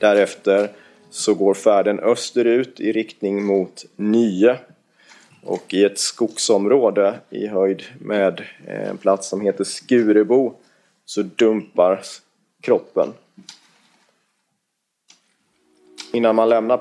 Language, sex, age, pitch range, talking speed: Swedish, male, 30-49, 95-115 Hz, 95 wpm